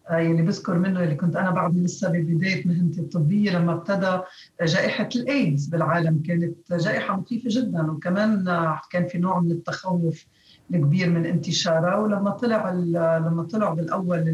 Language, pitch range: Arabic, 160-195 Hz